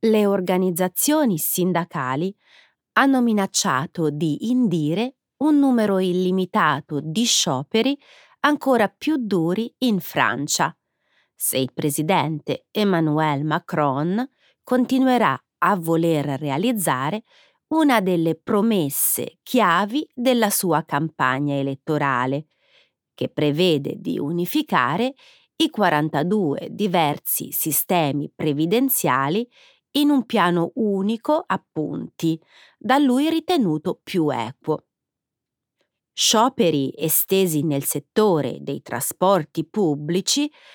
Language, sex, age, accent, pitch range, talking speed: Italian, female, 30-49, native, 155-245 Hz, 90 wpm